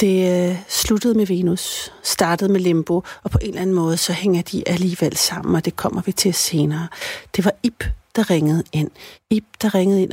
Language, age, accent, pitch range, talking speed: Danish, 60-79, native, 175-210 Hz, 200 wpm